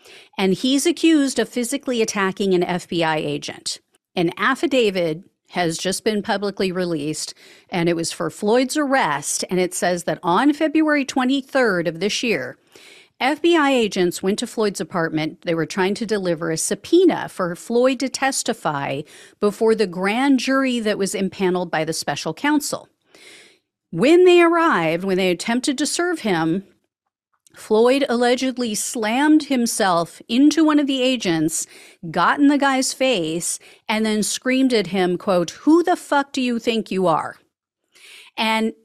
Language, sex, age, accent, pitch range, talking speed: English, female, 40-59, American, 185-275 Hz, 150 wpm